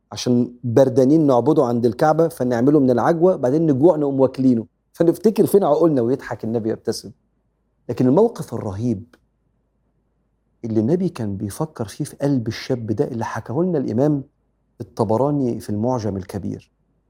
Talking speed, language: 135 wpm, Arabic